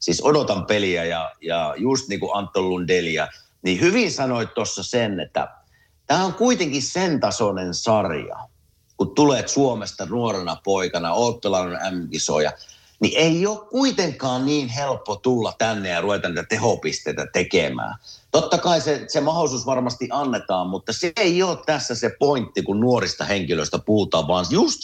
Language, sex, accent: Finnish, male, native